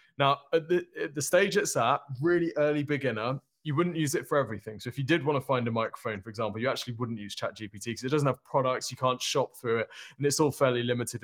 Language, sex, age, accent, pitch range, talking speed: English, male, 20-39, British, 115-145 Hz, 250 wpm